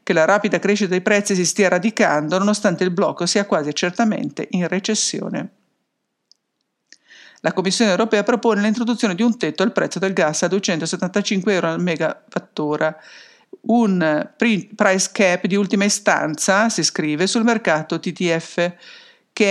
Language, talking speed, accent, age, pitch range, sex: English, 140 wpm, Italian, 50-69, 170-205 Hz, female